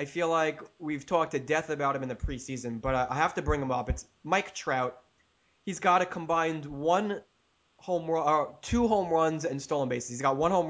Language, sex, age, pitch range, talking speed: English, male, 20-39, 135-175 Hz, 220 wpm